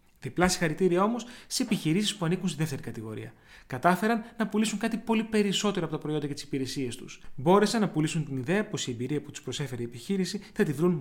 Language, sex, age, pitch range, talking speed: Greek, male, 30-49, 140-190 Hz, 215 wpm